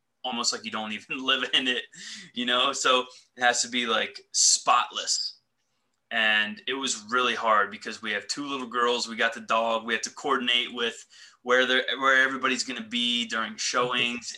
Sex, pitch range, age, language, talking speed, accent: male, 110-130 Hz, 20-39, English, 190 wpm, American